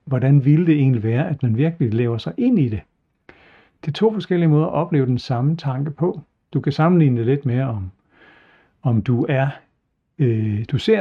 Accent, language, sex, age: native, Danish, male, 60-79